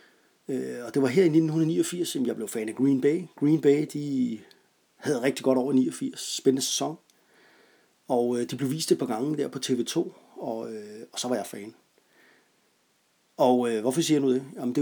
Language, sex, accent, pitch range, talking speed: Danish, male, native, 120-145 Hz, 205 wpm